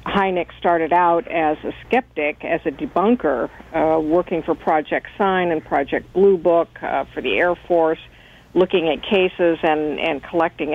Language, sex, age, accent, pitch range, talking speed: English, female, 50-69, American, 160-195 Hz, 160 wpm